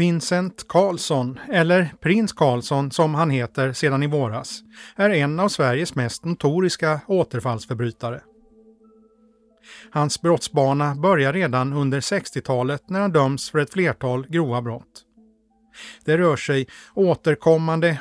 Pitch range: 130-180 Hz